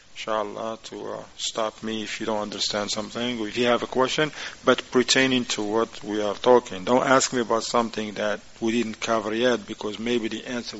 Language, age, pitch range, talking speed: English, 40-59, 110-130 Hz, 205 wpm